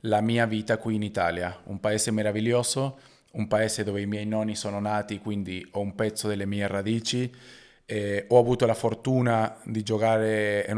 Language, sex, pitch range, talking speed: Italian, male, 105-125 Hz, 175 wpm